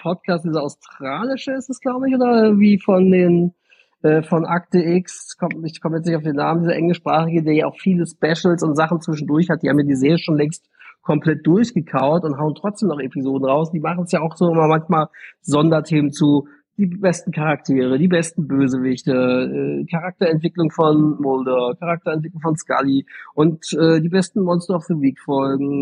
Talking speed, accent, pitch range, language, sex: 185 wpm, German, 140-170 Hz, German, male